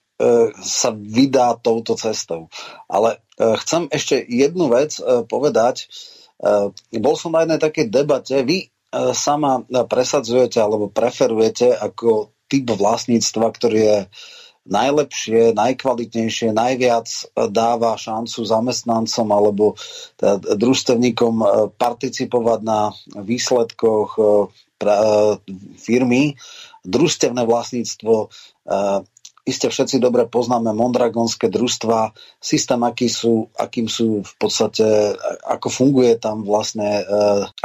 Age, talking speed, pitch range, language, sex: 30-49, 90 wpm, 110-125 Hz, Slovak, male